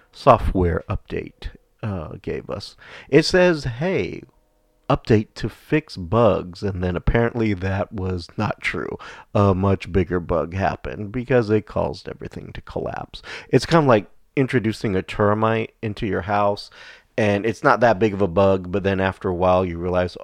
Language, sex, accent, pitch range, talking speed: English, male, American, 95-110 Hz, 165 wpm